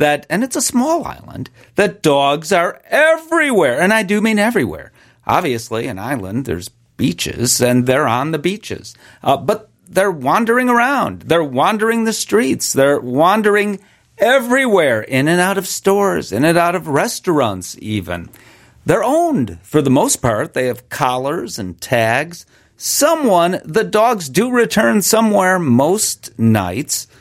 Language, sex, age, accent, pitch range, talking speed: English, male, 40-59, American, 120-195 Hz, 150 wpm